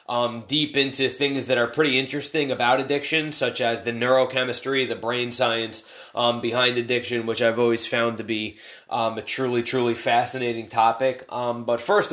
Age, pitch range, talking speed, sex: 20-39, 115-145 Hz, 175 wpm, male